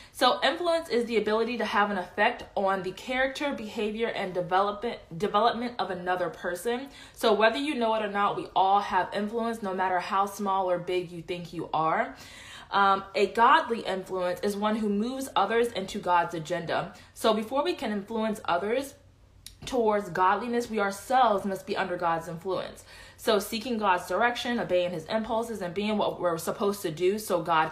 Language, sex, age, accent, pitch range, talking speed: English, female, 20-39, American, 180-220 Hz, 180 wpm